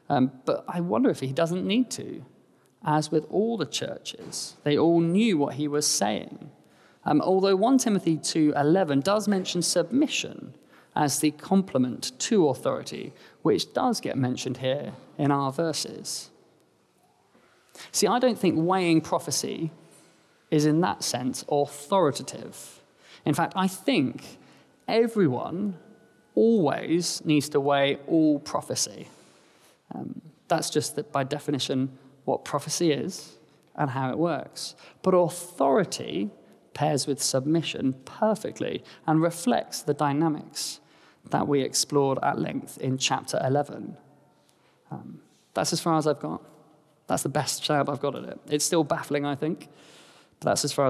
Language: English